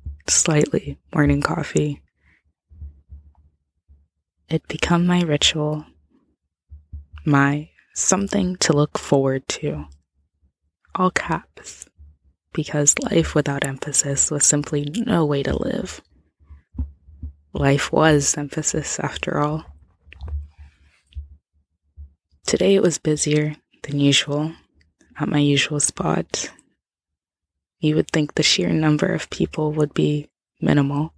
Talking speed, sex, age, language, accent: 100 wpm, female, 20-39, English, American